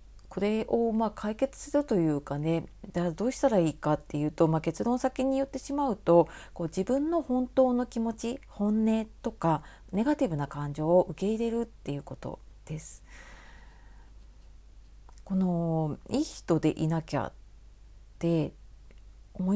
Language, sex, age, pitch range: Japanese, female, 40-59, 165-260 Hz